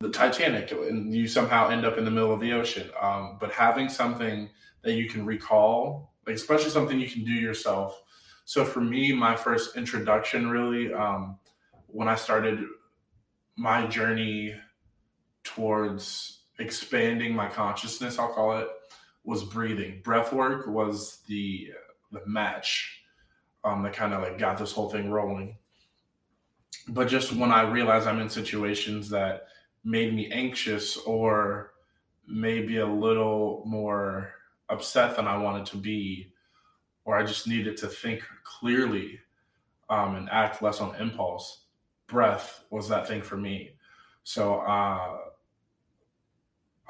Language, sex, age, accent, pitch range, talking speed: English, male, 20-39, American, 105-115 Hz, 140 wpm